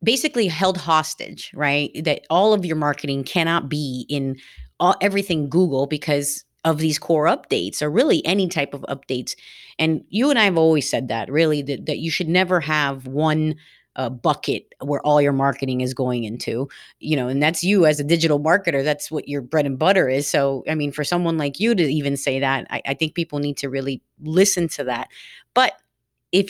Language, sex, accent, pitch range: English, female, American, 145-175 Hz